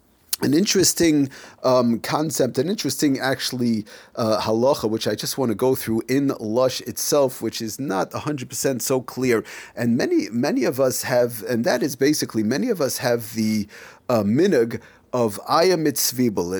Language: English